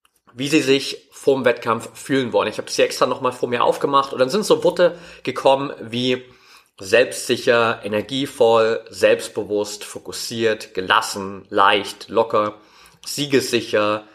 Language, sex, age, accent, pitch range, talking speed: German, male, 30-49, German, 110-145 Hz, 130 wpm